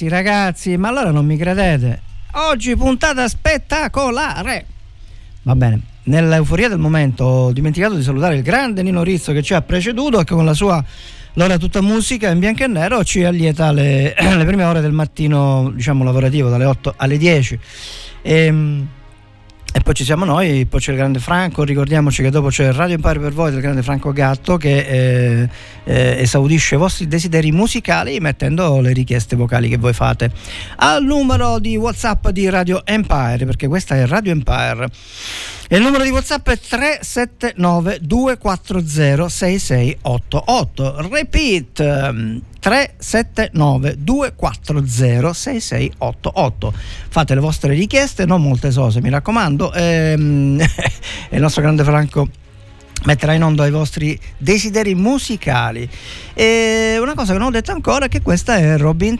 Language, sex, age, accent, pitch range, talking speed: Italian, male, 50-69, native, 130-185 Hz, 160 wpm